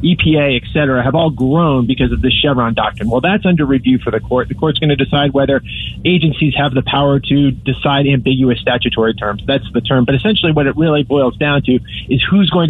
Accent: American